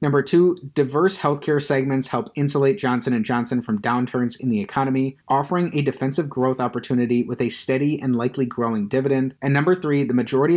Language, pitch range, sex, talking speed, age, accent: English, 125-150 Hz, male, 175 wpm, 30-49, American